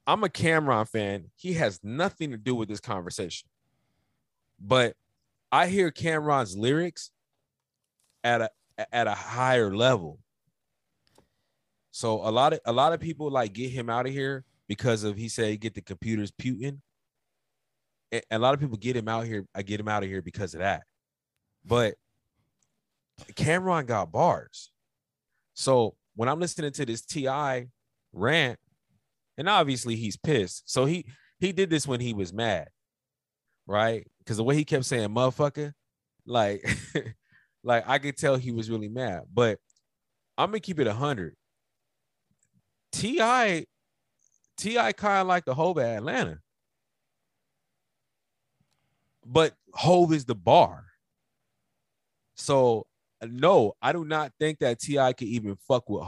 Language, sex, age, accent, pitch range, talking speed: English, male, 20-39, American, 110-150 Hz, 150 wpm